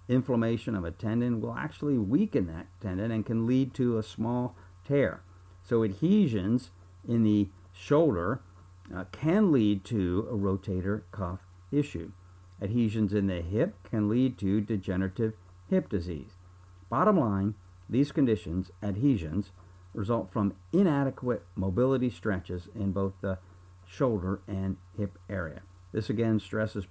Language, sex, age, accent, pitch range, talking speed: English, male, 50-69, American, 90-120 Hz, 130 wpm